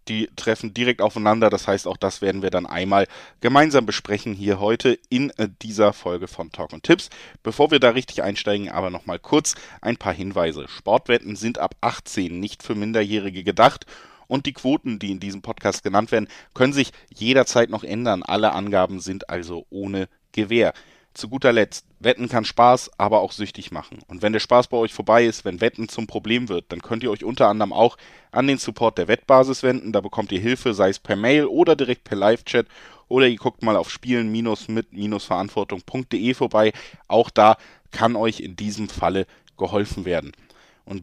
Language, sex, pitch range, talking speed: German, male, 100-125 Hz, 185 wpm